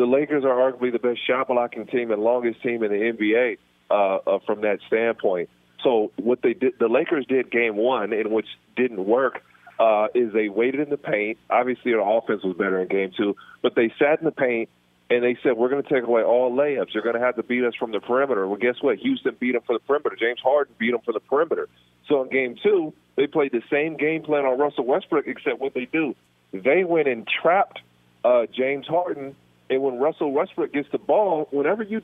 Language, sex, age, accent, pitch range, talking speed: English, male, 40-59, American, 120-155 Hz, 230 wpm